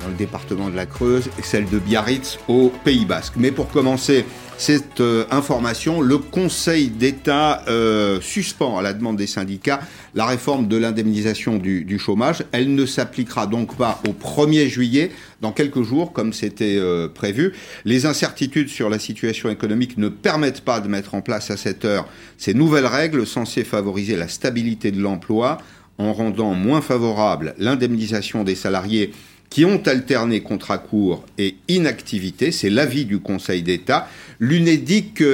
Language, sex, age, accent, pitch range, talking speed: French, male, 50-69, French, 105-145 Hz, 160 wpm